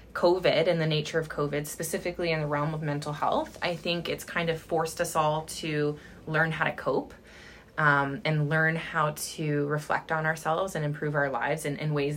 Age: 20-39